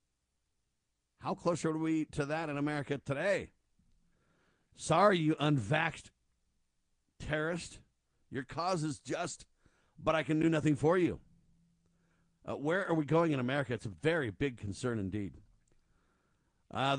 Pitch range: 130-165 Hz